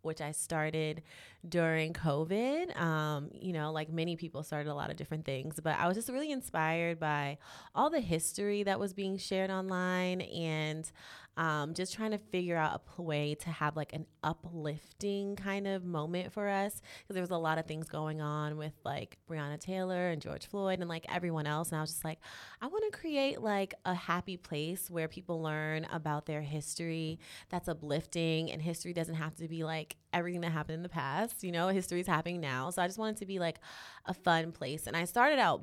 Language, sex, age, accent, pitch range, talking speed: English, female, 20-39, American, 155-185 Hz, 210 wpm